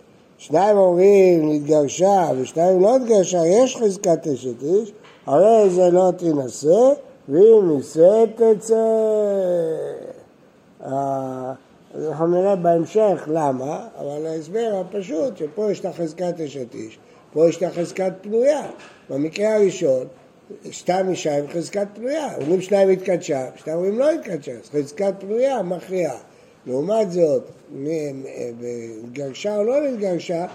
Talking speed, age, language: 120 wpm, 60-79, Hebrew